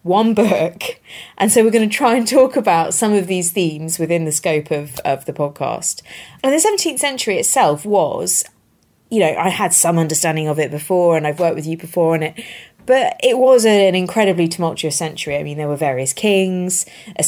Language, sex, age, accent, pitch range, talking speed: English, female, 20-39, British, 155-215 Hz, 205 wpm